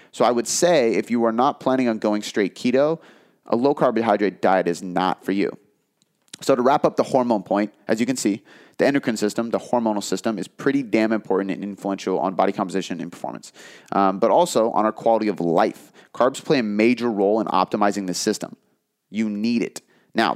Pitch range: 100-115 Hz